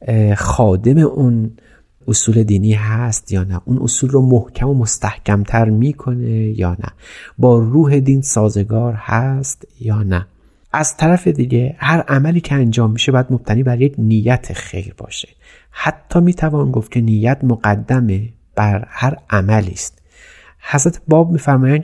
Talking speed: 135 wpm